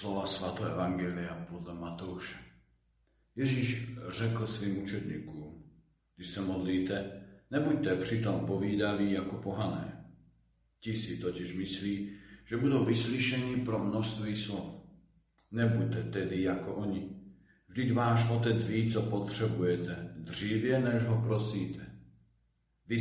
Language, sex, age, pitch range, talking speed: Slovak, male, 50-69, 90-115 Hz, 110 wpm